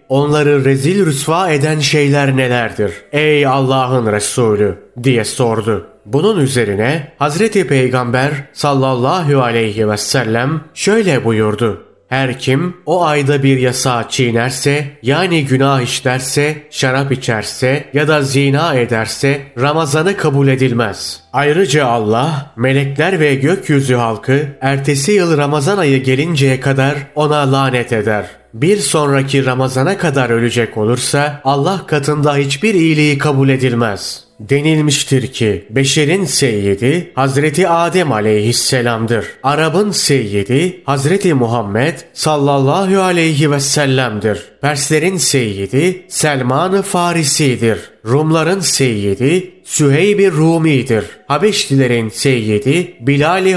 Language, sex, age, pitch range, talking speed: Turkish, male, 30-49, 125-155 Hz, 105 wpm